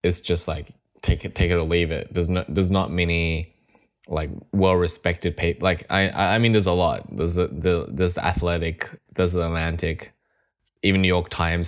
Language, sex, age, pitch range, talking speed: English, male, 10-29, 85-95 Hz, 200 wpm